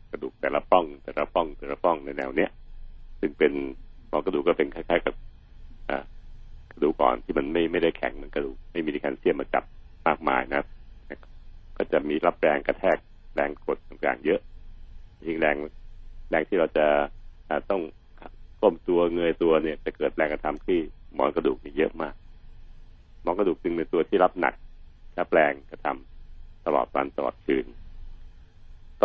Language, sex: Thai, male